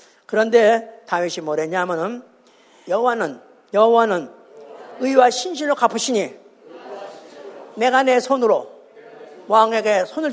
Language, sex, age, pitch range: Korean, female, 40-59, 210-310 Hz